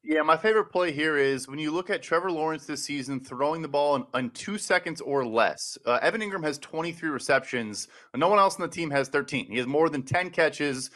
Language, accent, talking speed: English, American, 235 wpm